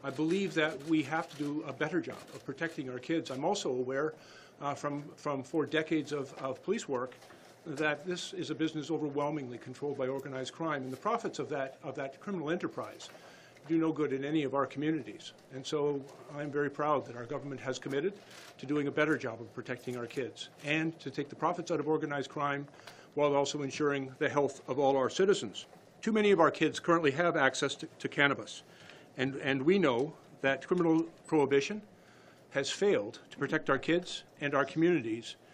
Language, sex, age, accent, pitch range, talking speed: English, male, 50-69, American, 140-165 Hz, 195 wpm